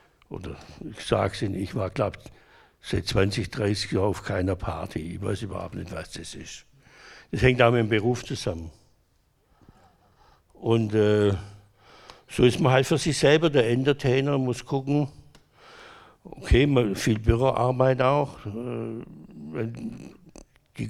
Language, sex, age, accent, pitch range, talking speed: German, male, 60-79, German, 100-130 Hz, 130 wpm